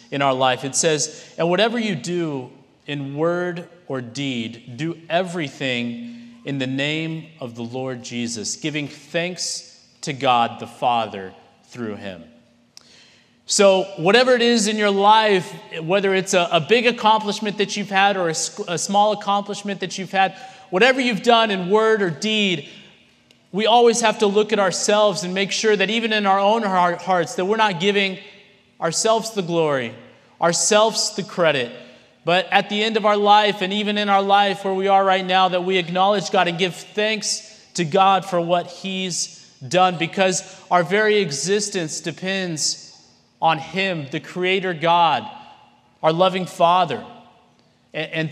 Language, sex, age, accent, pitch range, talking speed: English, male, 30-49, American, 160-205 Hz, 165 wpm